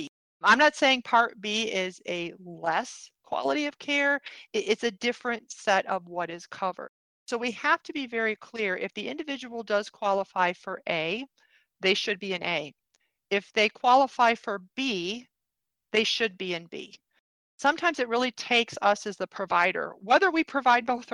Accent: American